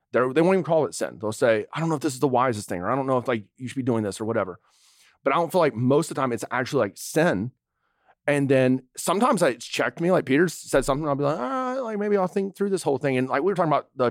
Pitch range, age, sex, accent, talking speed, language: 125-160 Hz, 30-49, male, American, 320 wpm, English